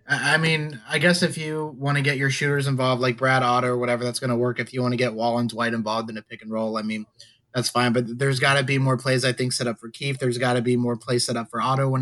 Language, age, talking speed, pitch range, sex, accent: English, 20-39, 315 wpm, 120-140 Hz, male, American